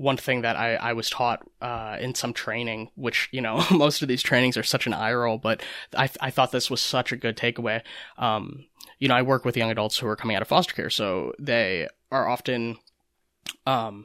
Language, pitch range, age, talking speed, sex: English, 115-140 Hz, 20-39, 225 wpm, male